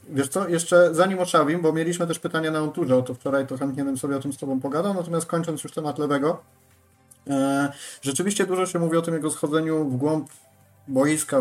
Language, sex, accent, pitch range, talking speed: Polish, male, native, 135-160 Hz, 210 wpm